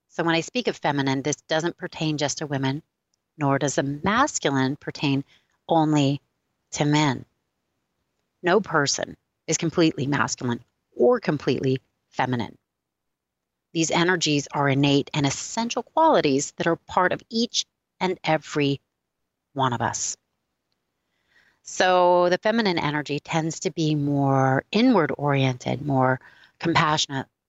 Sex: female